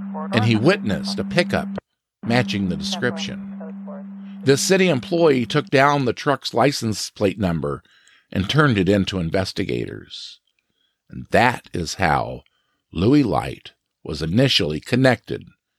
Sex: male